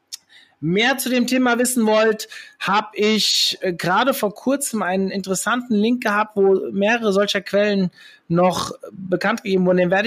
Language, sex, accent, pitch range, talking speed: German, male, German, 195-235 Hz, 150 wpm